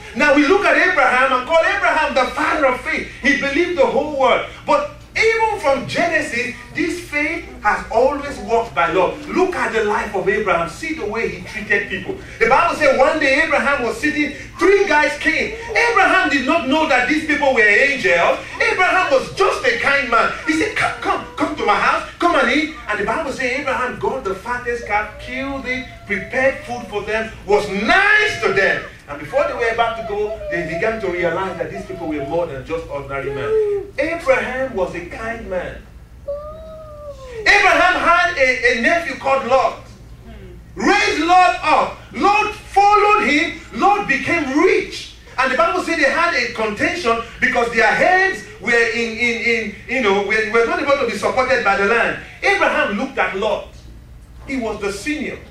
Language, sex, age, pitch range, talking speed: English, male, 40-59, 230-340 Hz, 185 wpm